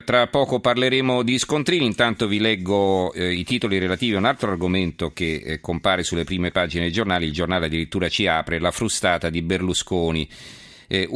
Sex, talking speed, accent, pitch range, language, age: male, 185 wpm, native, 80-100 Hz, Italian, 40-59